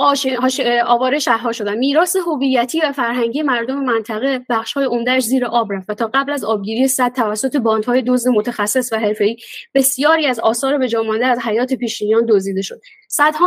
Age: 20-39